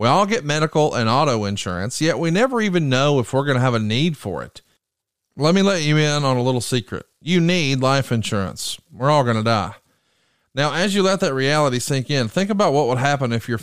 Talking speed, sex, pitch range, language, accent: 240 wpm, male, 125-165 Hz, English, American